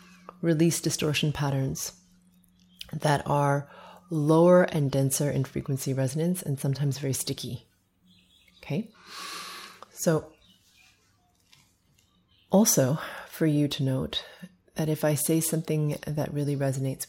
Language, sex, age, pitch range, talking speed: English, female, 30-49, 105-170 Hz, 105 wpm